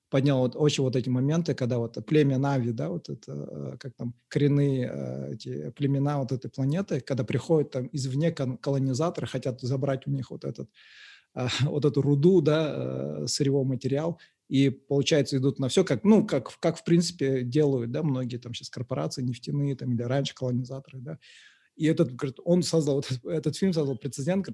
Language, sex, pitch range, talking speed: Russian, male, 130-150 Hz, 175 wpm